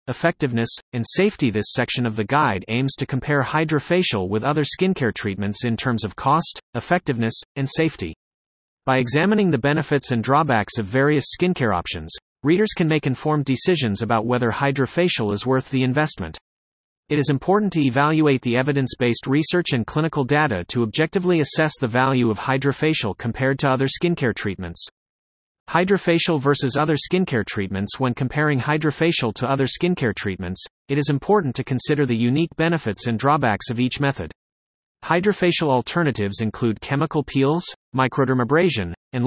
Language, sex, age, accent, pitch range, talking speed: English, male, 30-49, American, 120-155 Hz, 155 wpm